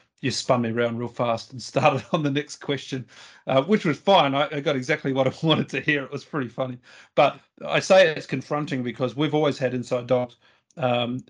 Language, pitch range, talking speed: English, 120-140 Hz, 220 wpm